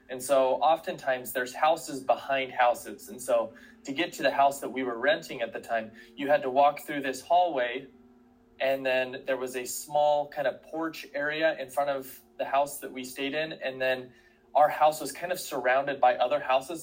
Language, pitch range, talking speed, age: English, 120-145 Hz, 205 wpm, 20-39